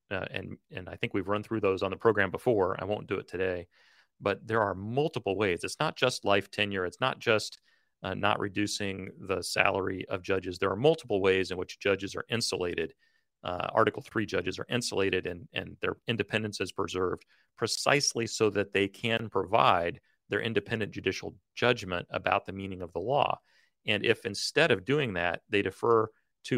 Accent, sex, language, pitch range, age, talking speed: American, male, English, 95-110 Hz, 40-59, 190 wpm